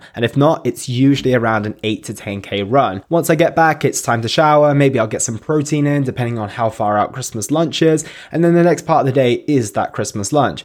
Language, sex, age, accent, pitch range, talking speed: English, male, 20-39, British, 110-145 Hz, 255 wpm